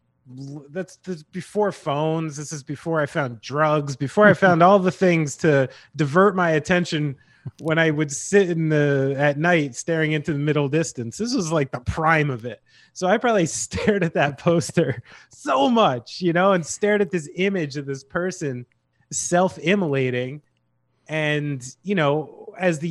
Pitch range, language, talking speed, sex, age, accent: 130-175 Hz, English, 170 wpm, male, 30-49, American